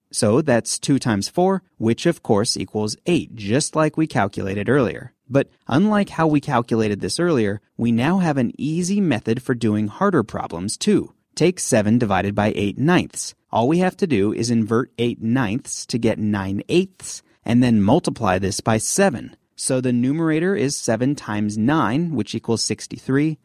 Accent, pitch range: American, 110-155 Hz